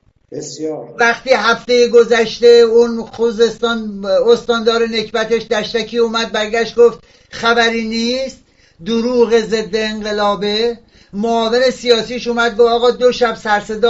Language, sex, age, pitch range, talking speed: Persian, male, 60-79, 210-245 Hz, 105 wpm